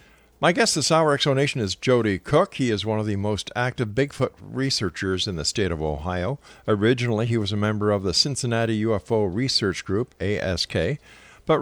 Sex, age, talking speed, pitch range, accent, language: male, 50-69, 180 wpm, 100-130 Hz, American, English